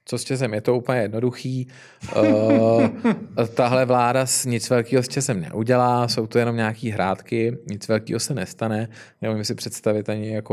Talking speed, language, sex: 170 wpm, Czech, male